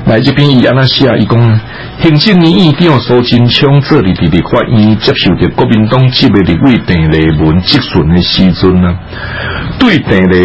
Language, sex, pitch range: Chinese, male, 85-130 Hz